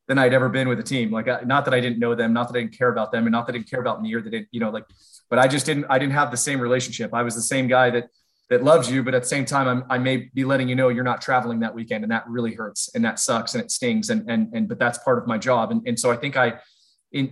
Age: 30-49